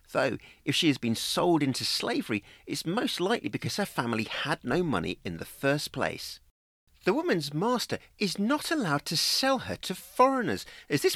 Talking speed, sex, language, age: 185 wpm, male, English, 40-59